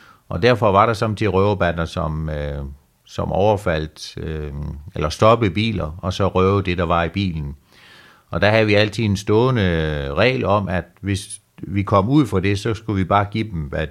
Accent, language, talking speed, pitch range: native, Danish, 200 wpm, 85-105 Hz